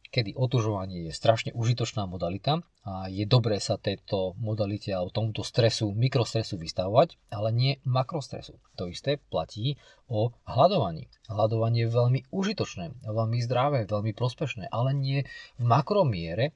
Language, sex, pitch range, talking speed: Slovak, male, 100-130 Hz, 135 wpm